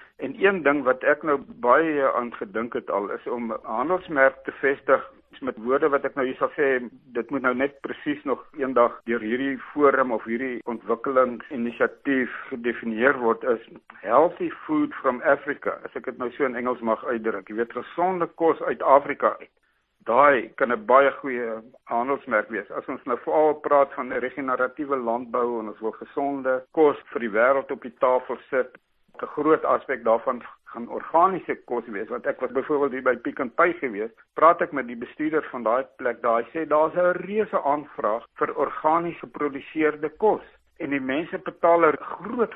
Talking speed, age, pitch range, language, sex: 185 wpm, 60-79, 125-170 Hz, Swedish, male